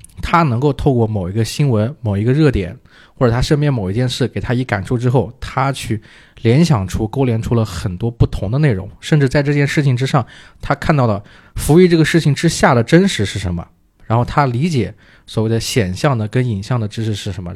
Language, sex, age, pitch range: Chinese, male, 20-39, 100-130 Hz